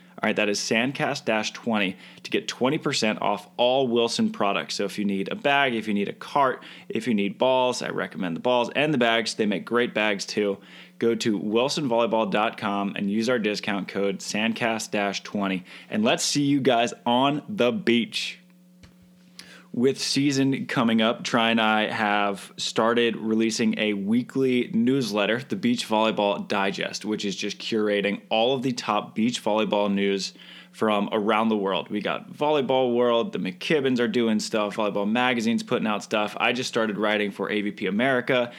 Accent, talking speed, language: American, 170 wpm, English